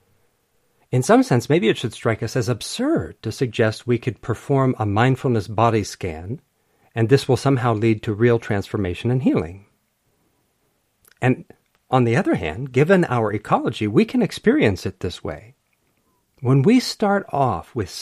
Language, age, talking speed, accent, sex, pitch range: English, 50-69, 160 wpm, American, male, 110-150 Hz